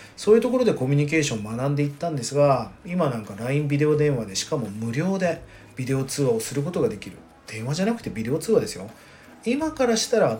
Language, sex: Japanese, male